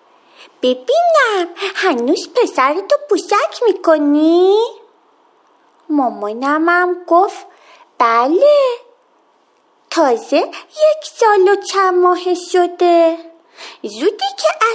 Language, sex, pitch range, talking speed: Persian, female, 270-410 Hz, 70 wpm